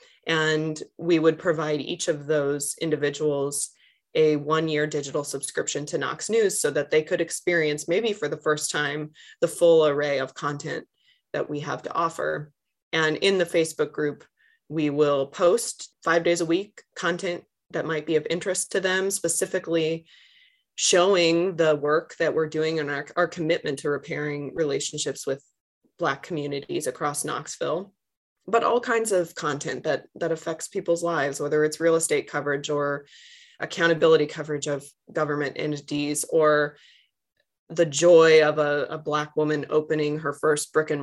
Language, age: English, 20-39